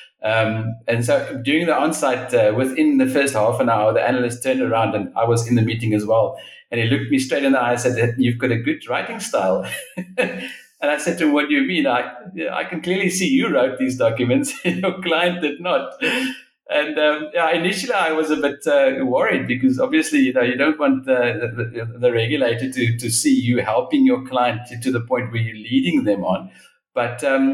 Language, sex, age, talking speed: English, male, 50-69, 220 wpm